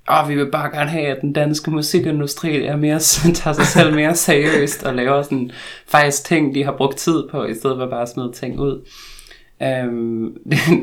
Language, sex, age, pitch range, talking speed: Danish, male, 20-39, 115-140 Hz, 210 wpm